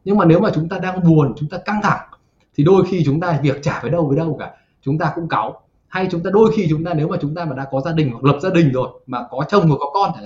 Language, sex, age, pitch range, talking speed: Vietnamese, male, 20-39, 145-195 Hz, 330 wpm